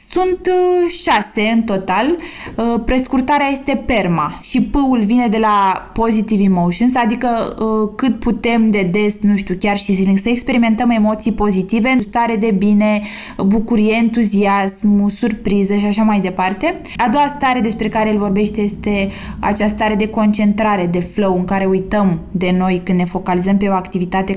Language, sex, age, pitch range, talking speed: Romanian, female, 20-39, 195-230 Hz, 155 wpm